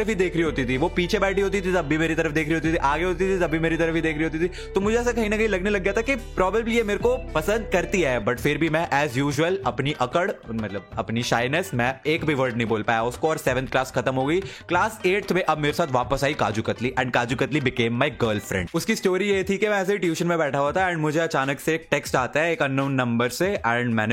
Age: 20-39